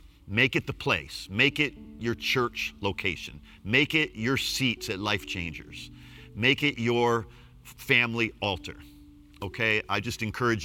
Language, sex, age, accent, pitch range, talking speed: English, male, 50-69, American, 85-115 Hz, 140 wpm